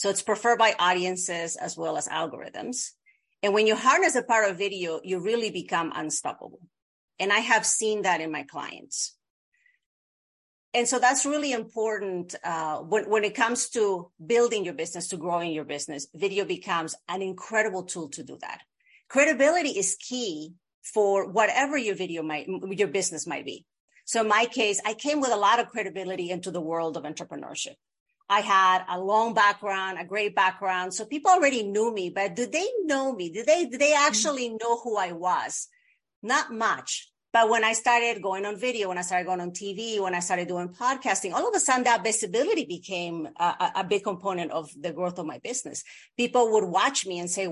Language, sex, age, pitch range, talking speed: English, female, 40-59, 180-240 Hz, 195 wpm